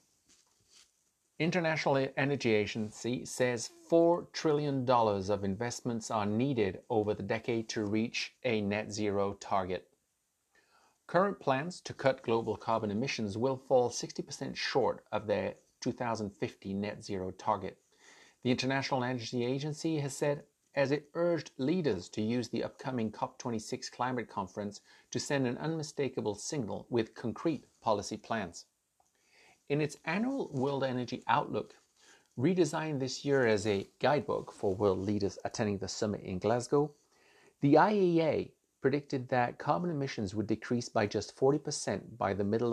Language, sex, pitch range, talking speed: English, male, 105-140 Hz, 135 wpm